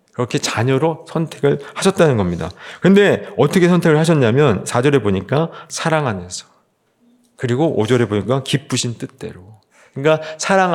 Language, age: Korean, 40-59